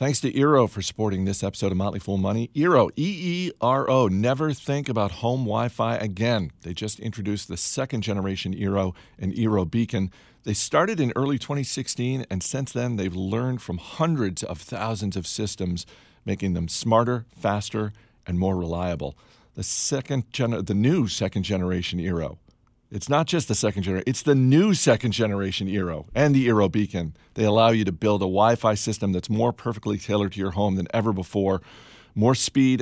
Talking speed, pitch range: 165 wpm, 95-115 Hz